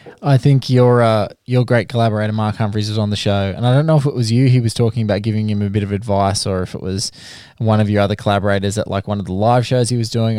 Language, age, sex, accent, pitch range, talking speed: English, 20-39, male, Australian, 105-135 Hz, 290 wpm